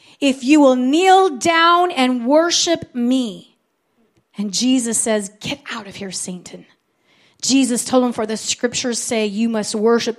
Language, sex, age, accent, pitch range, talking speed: English, female, 30-49, American, 225-285 Hz, 155 wpm